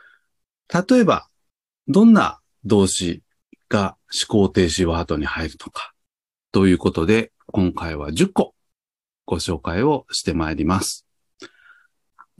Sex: male